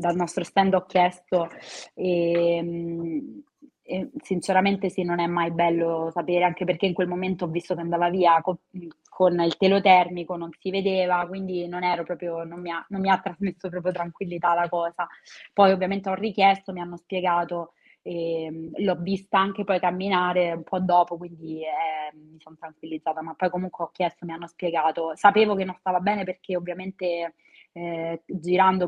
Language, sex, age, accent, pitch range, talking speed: Italian, female, 20-39, native, 170-185 Hz, 165 wpm